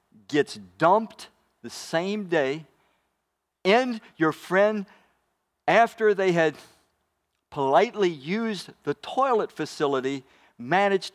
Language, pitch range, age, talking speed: English, 145-220 Hz, 50-69, 90 wpm